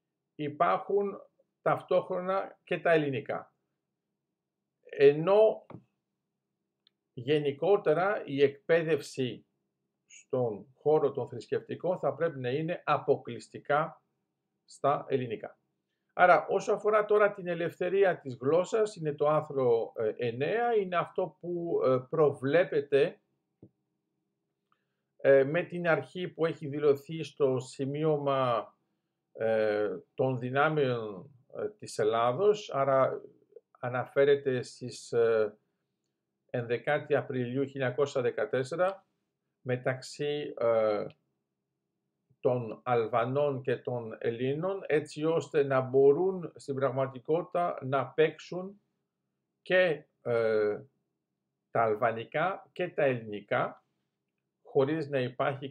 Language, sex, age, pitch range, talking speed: Greek, male, 50-69, 130-185 Hz, 85 wpm